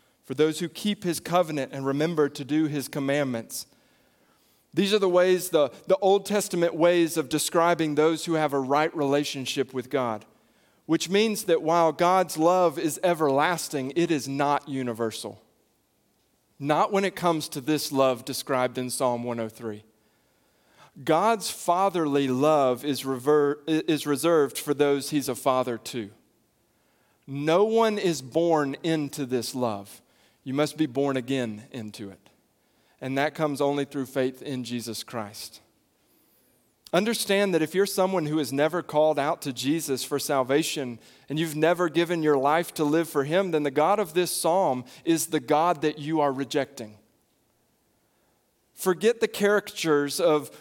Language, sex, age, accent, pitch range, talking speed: English, male, 40-59, American, 135-165 Hz, 155 wpm